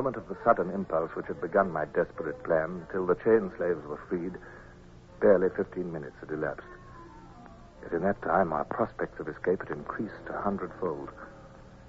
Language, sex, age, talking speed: English, male, 60-79, 165 wpm